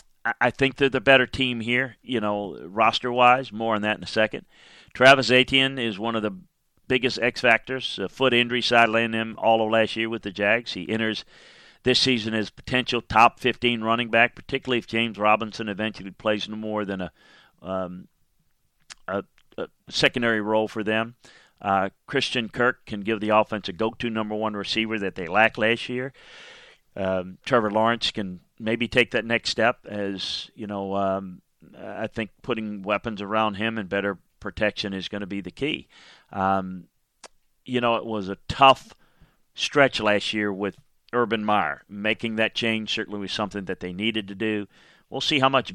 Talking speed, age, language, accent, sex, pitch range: 180 wpm, 40-59, English, American, male, 100-120 Hz